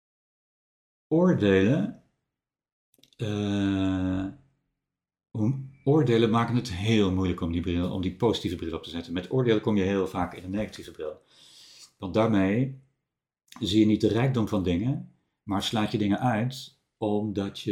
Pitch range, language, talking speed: 95-125 Hz, Dutch, 140 wpm